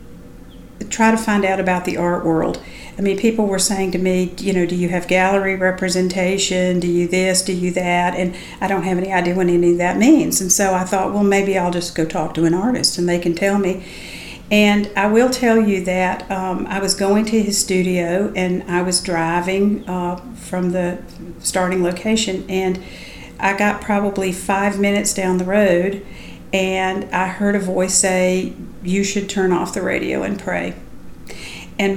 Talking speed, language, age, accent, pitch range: 195 wpm, English, 50-69, American, 185-200 Hz